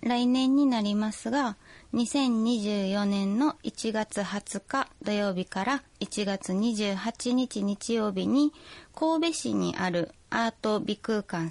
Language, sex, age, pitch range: Japanese, female, 20-39, 180-245 Hz